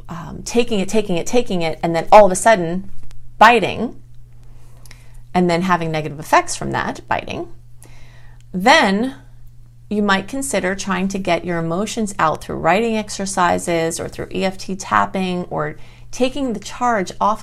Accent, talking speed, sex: American, 150 wpm, female